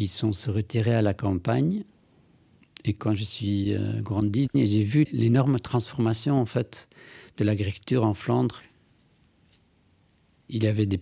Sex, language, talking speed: male, French, 145 wpm